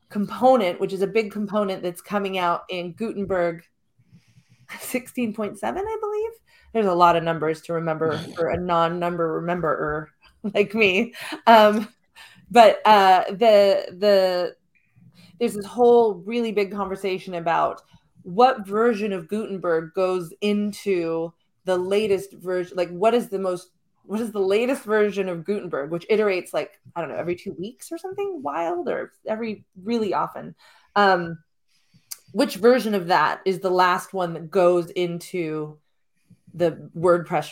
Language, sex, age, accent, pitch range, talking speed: English, female, 30-49, American, 175-210 Hz, 145 wpm